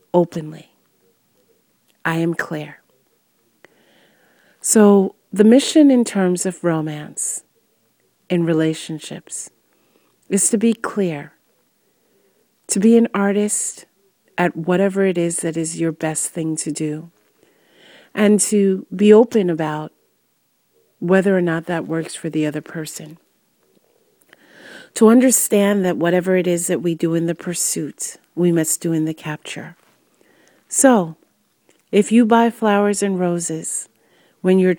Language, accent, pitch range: English, American, 165-205 Hz